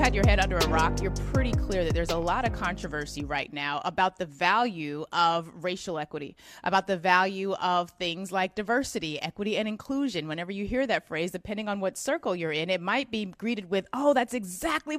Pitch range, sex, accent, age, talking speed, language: 165-230 Hz, female, American, 30-49, 210 wpm, English